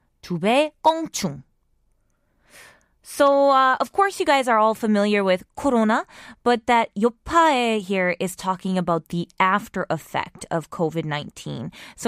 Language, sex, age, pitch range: Korean, female, 20-39, 175-240 Hz